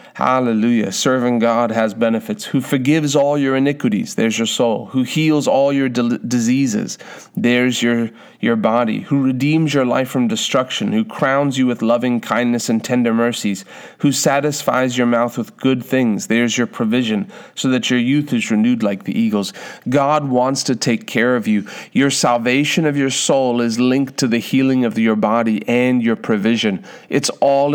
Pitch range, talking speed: 120-150 Hz, 175 wpm